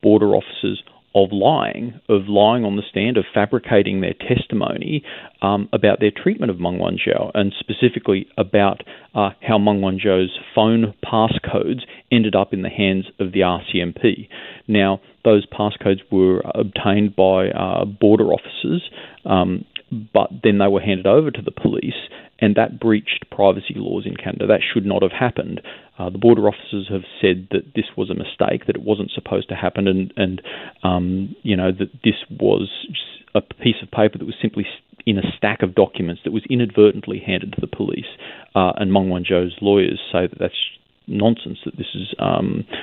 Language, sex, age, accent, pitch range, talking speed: English, male, 40-59, Australian, 95-105 Hz, 180 wpm